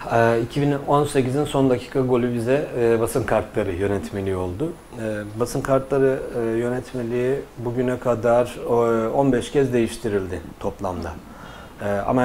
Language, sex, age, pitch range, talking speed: Turkish, male, 40-59, 105-130 Hz, 95 wpm